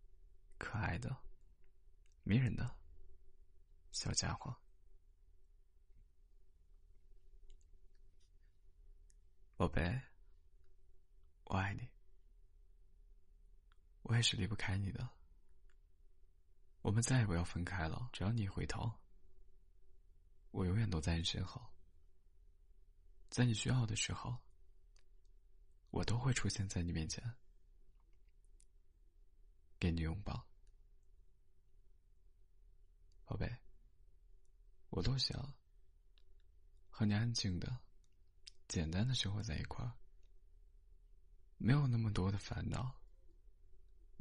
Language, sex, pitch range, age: Chinese, male, 75-95 Hz, 20-39